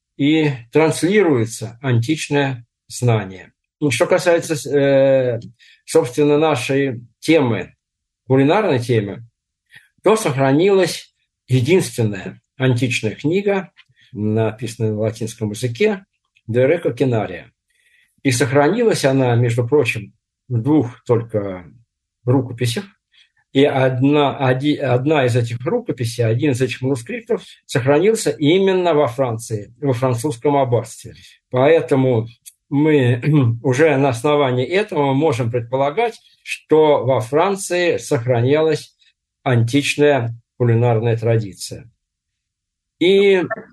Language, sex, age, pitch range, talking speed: Russian, male, 50-69, 115-150 Hz, 90 wpm